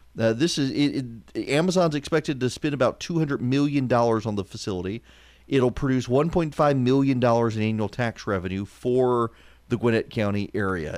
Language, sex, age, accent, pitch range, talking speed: English, male, 40-59, American, 110-145 Hz, 170 wpm